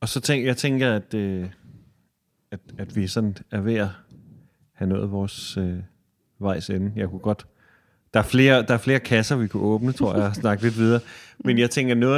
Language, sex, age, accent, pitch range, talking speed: Danish, male, 30-49, native, 95-120 Hz, 205 wpm